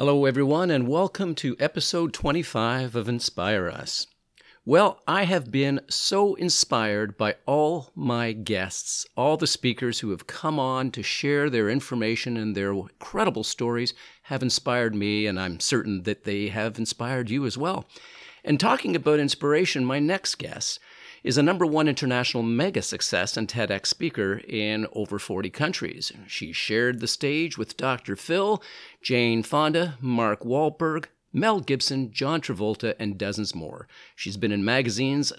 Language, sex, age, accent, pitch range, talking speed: English, male, 50-69, American, 105-150 Hz, 155 wpm